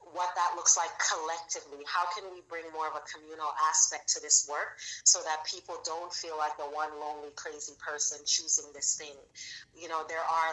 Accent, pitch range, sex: American, 150-170 Hz, female